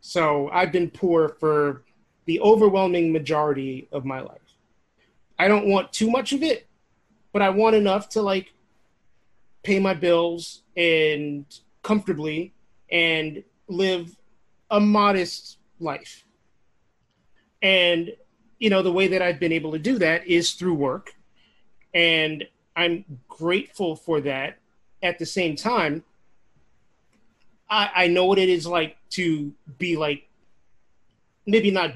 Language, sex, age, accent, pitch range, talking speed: English, male, 30-49, American, 150-185 Hz, 130 wpm